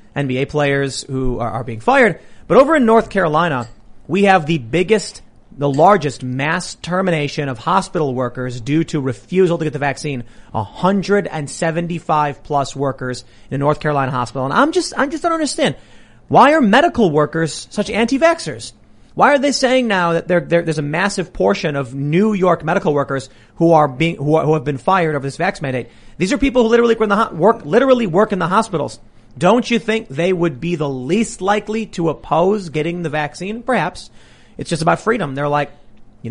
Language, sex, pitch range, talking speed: English, male, 135-190 Hz, 180 wpm